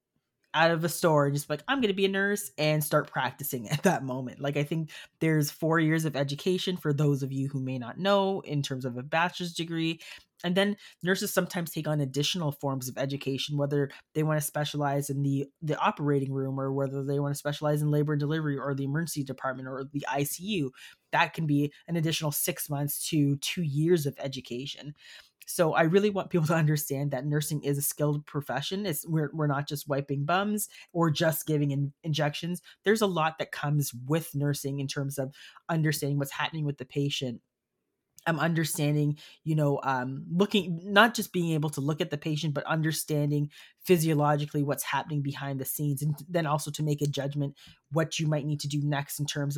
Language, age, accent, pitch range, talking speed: English, 20-39, American, 140-165 Hz, 210 wpm